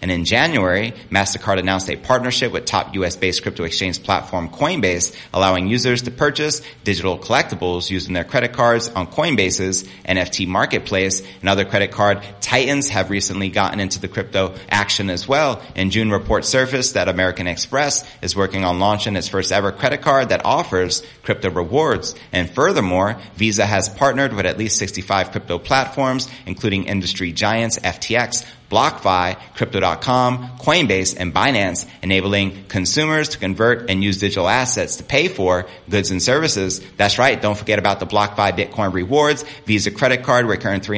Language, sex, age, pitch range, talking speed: English, male, 30-49, 95-115 Hz, 160 wpm